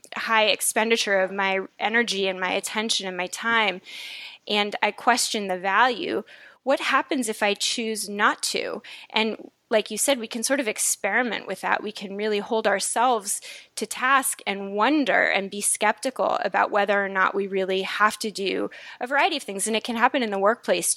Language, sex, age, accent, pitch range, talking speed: English, female, 20-39, American, 195-240 Hz, 190 wpm